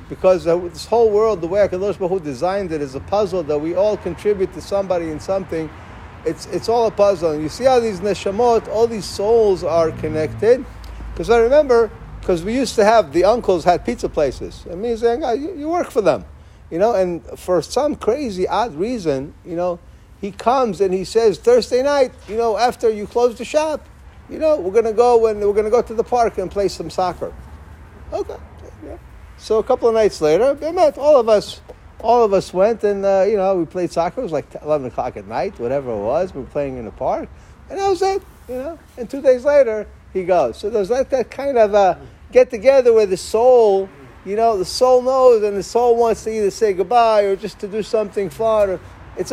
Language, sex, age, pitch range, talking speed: English, male, 50-69, 180-245 Hz, 225 wpm